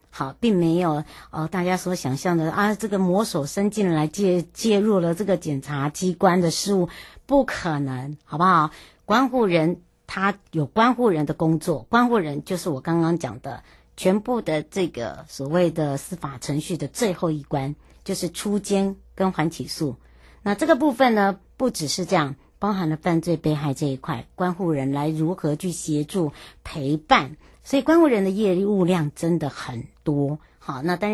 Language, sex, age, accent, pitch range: Chinese, male, 60-79, American, 150-195 Hz